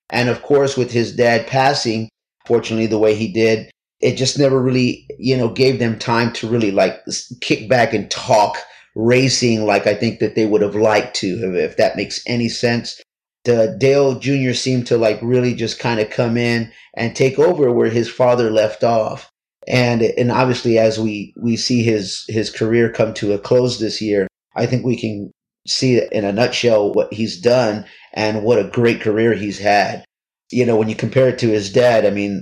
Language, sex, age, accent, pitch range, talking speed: English, male, 30-49, American, 110-125 Hz, 200 wpm